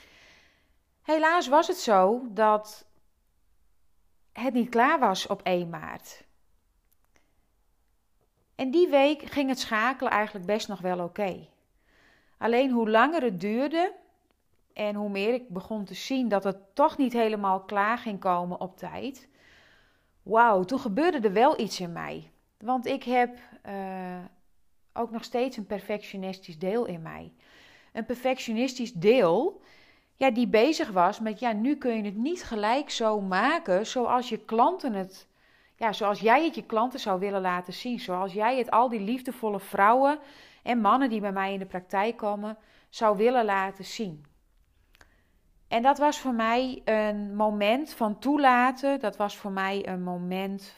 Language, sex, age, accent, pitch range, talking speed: Dutch, female, 30-49, Dutch, 190-255 Hz, 155 wpm